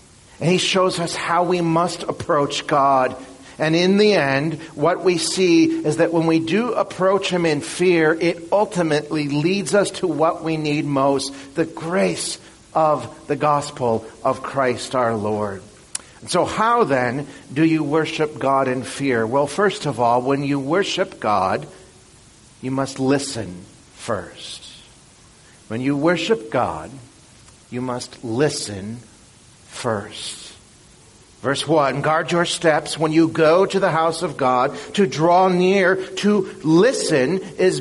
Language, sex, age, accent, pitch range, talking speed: English, male, 50-69, American, 135-180 Hz, 145 wpm